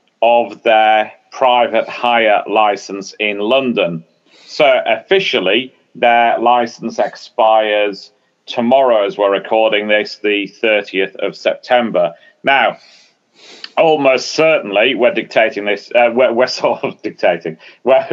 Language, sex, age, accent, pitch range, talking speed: English, male, 40-59, British, 105-125 Hz, 115 wpm